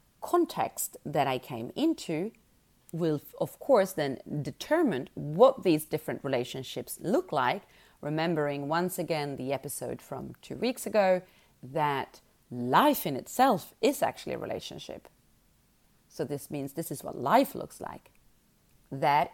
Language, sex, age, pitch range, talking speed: English, female, 30-49, 140-200 Hz, 135 wpm